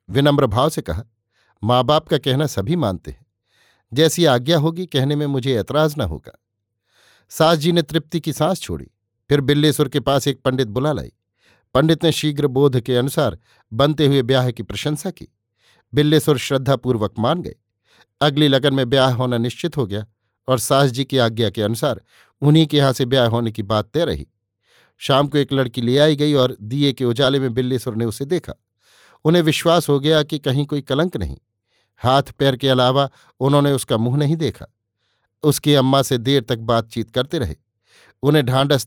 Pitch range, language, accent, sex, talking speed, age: 115-145 Hz, Hindi, native, male, 185 wpm, 50-69